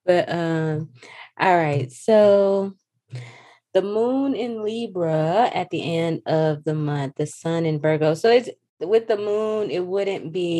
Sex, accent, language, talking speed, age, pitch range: female, American, English, 155 wpm, 20-39, 145-175 Hz